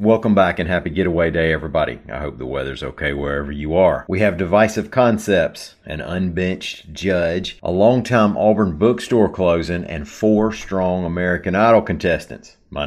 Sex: male